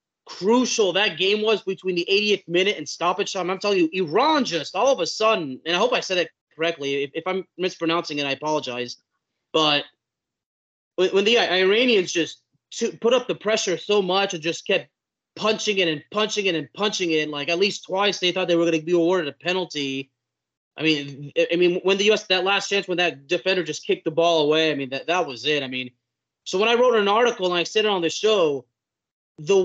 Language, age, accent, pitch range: English, 30-49, American, 160-215 Hz